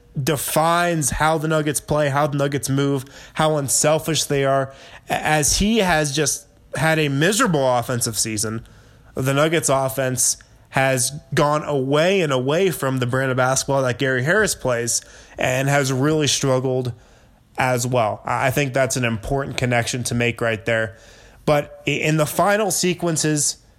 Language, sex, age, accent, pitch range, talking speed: English, male, 20-39, American, 125-155 Hz, 150 wpm